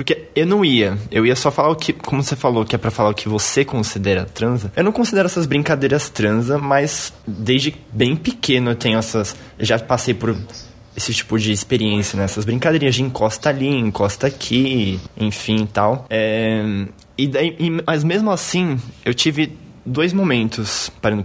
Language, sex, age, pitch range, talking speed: Portuguese, male, 20-39, 110-145 Hz, 180 wpm